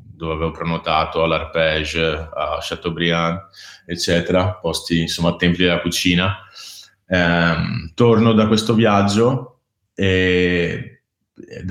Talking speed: 100 wpm